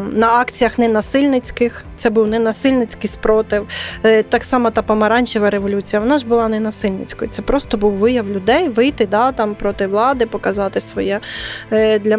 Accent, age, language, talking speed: native, 20-39, Ukrainian, 145 wpm